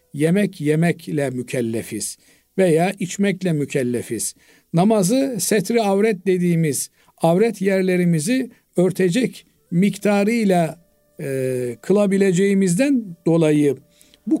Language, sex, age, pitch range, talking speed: Turkish, male, 50-69, 165-215 Hz, 75 wpm